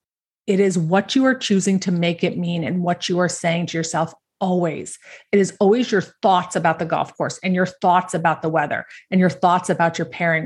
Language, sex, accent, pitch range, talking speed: English, female, American, 175-205 Hz, 225 wpm